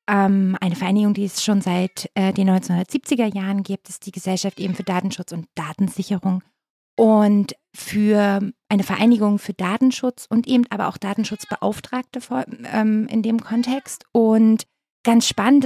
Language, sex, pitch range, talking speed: German, female, 195-235 Hz, 140 wpm